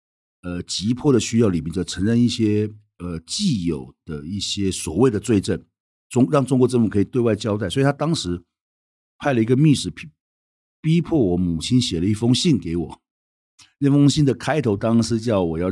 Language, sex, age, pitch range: Chinese, male, 50-69, 85-120 Hz